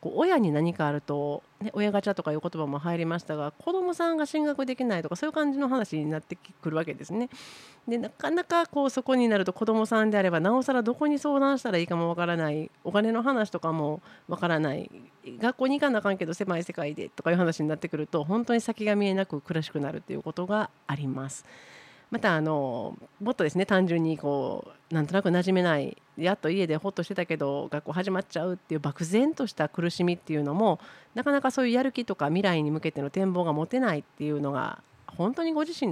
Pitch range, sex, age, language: 155-225 Hz, female, 40-59, Japanese